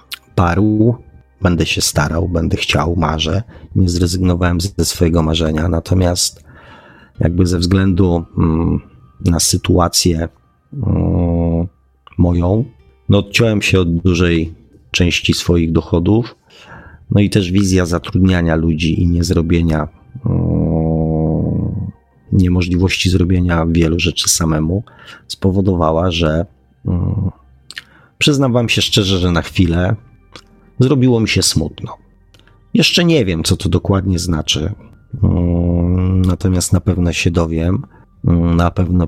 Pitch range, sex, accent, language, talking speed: 85-95 Hz, male, native, Polish, 100 wpm